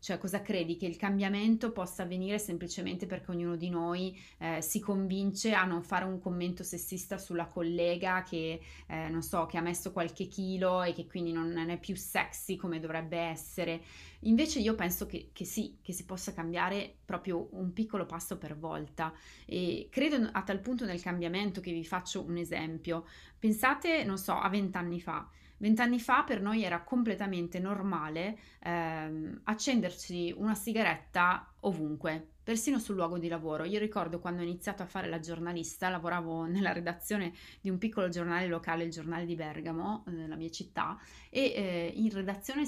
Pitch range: 170-205 Hz